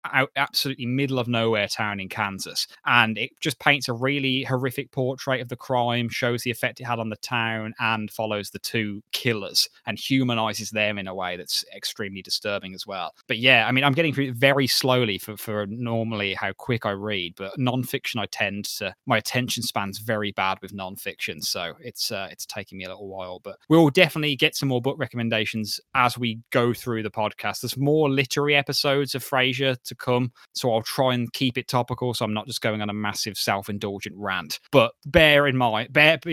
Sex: male